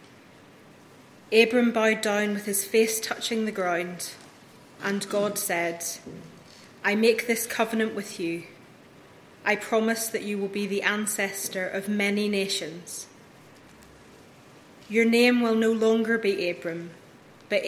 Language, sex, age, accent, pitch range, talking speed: English, female, 30-49, British, 195-220 Hz, 125 wpm